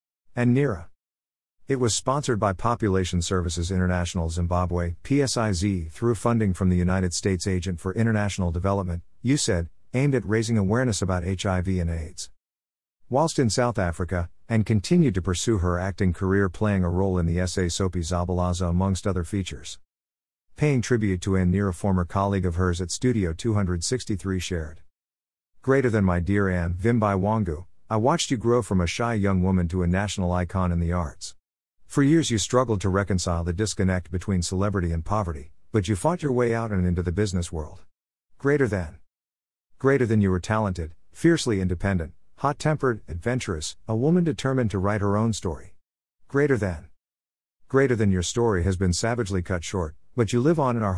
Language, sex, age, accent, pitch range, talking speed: English, male, 50-69, American, 85-115 Hz, 175 wpm